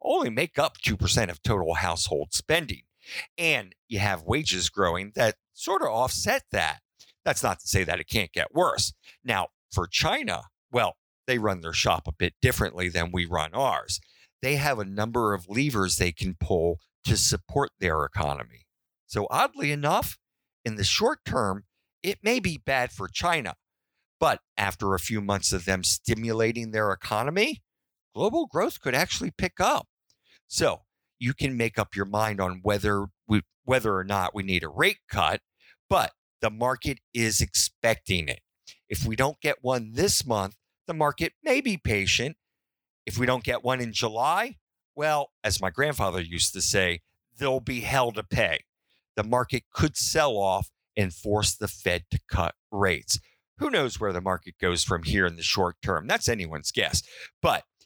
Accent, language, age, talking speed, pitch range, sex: American, English, 50-69, 175 wpm, 95-130 Hz, male